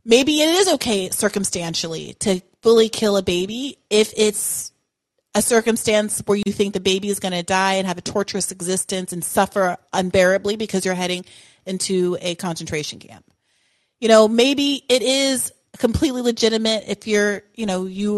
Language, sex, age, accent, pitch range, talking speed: English, female, 30-49, American, 190-225 Hz, 165 wpm